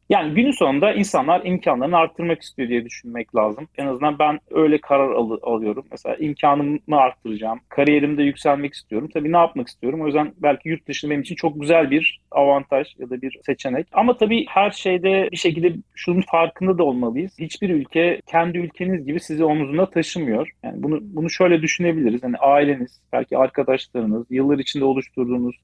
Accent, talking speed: native, 165 wpm